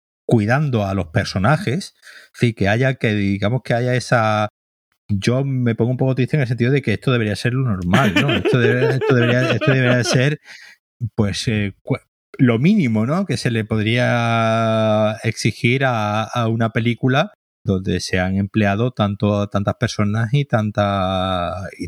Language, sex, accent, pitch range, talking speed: Spanish, male, Spanish, 100-120 Hz, 165 wpm